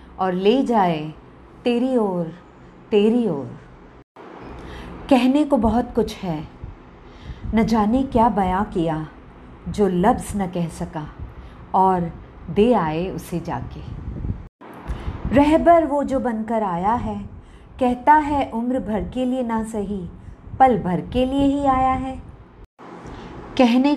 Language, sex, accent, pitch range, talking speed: Hindi, female, native, 180-255 Hz, 125 wpm